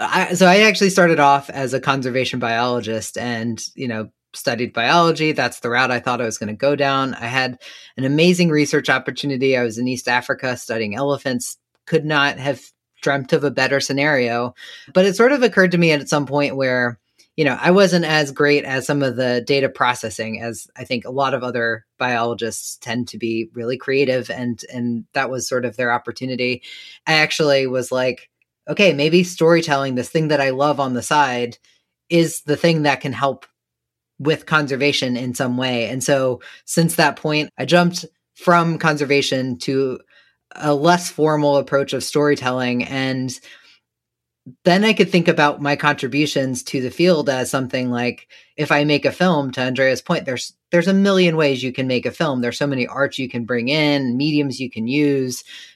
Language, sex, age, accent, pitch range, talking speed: English, female, 20-39, American, 125-150 Hz, 190 wpm